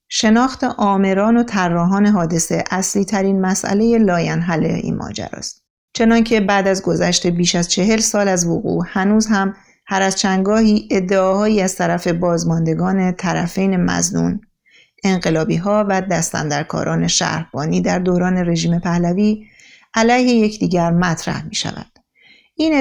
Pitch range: 170-210 Hz